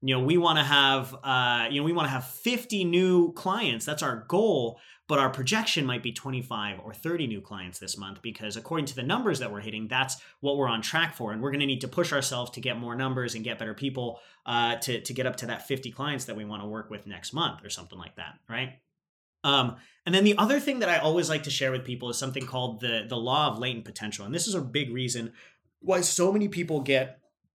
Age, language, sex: 30-49, English, male